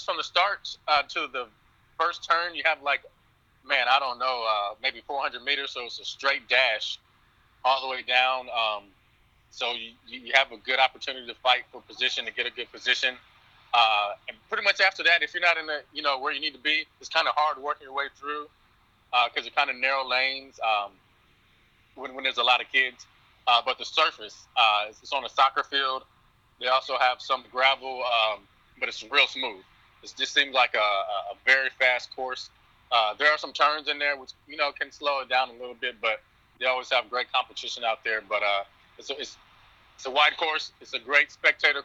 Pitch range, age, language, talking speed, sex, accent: 125-140 Hz, 20-39, English, 215 wpm, male, American